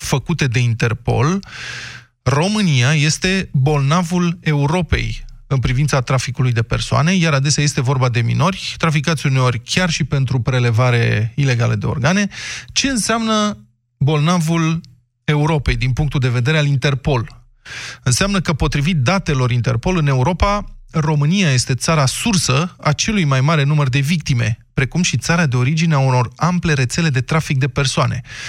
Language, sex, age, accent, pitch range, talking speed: Romanian, male, 30-49, native, 125-165 Hz, 145 wpm